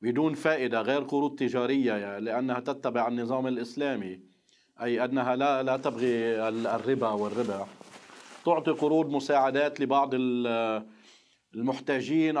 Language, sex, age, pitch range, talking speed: Arabic, male, 40-59, 125-150 Hz, 100 wpm